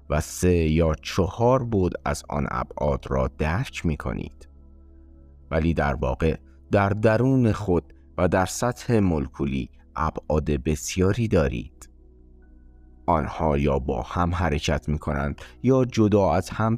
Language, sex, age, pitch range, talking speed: Persian, male, 30-49, 70-90 Hz, 130 wpm